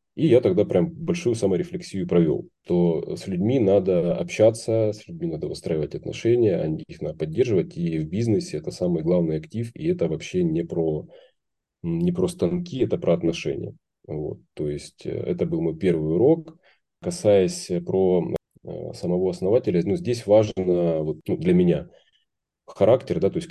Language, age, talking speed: Russian, 30-49, 150 wpm